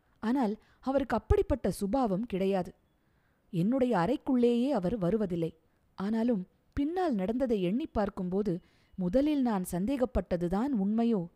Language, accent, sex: Tamil, native, female